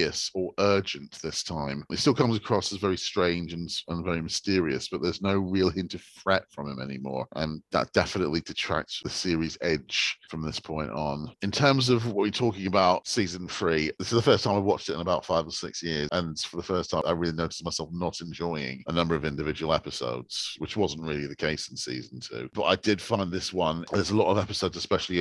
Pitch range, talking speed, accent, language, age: 80-95 Hz, 225 wpm, British, English, 40-59